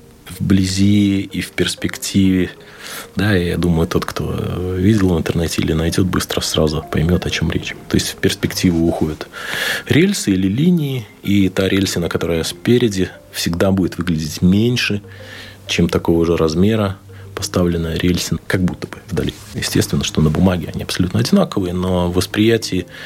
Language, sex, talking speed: Russian, male, 145 wpm